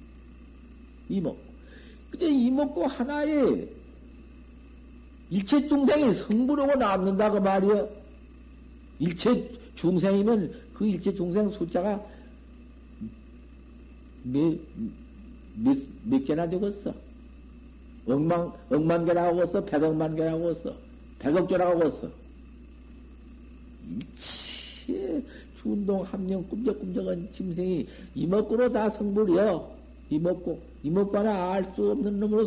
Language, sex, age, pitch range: Korean, male, 50-69, 165-225 Hz